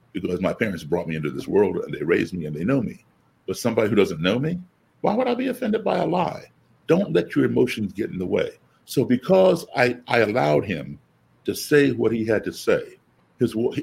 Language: English